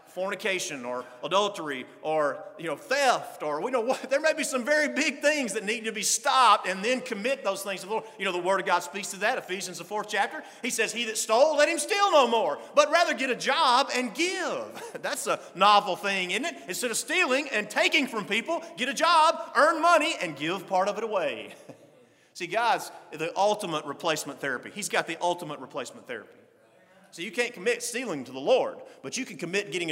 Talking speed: 225 wpm